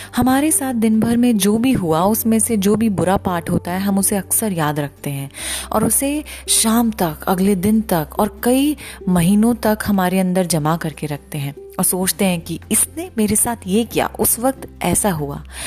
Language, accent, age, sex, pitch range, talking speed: Hindi, native, 30-49, female, 155-220 Hz, 200 wpm